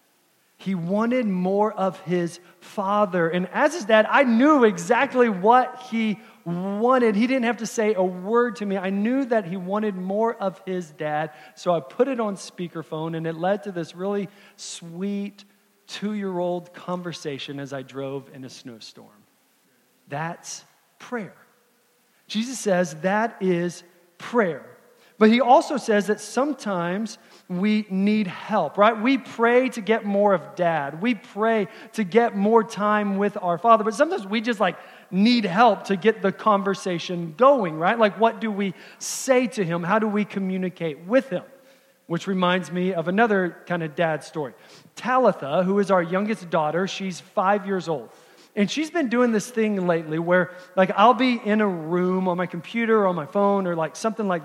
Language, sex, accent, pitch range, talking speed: English, male, American, 180-235 Hz, 175 wpm